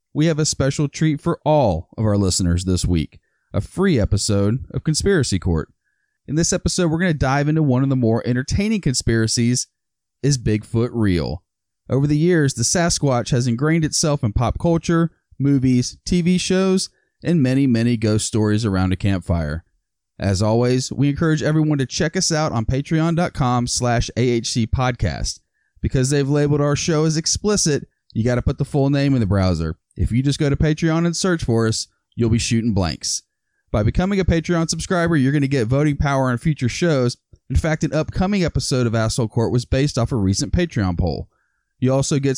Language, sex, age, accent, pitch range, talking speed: English, male, 30-49, American, 110-155 Hz, 185 wpm